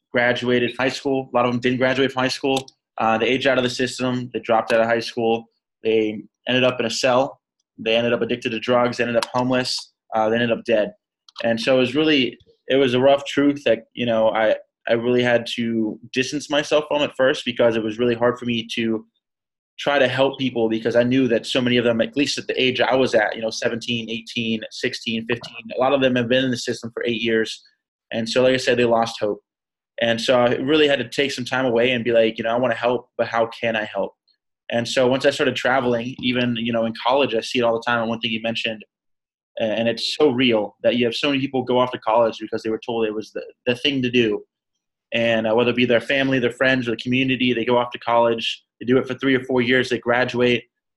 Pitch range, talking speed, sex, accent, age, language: 115-130 Hz, 260 wpm, male, American, 20-39, English